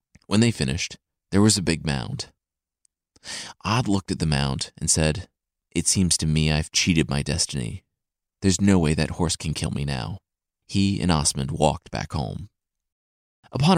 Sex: male